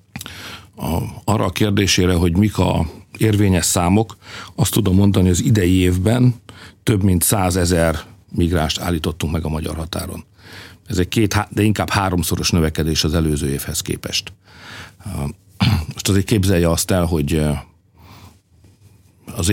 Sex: male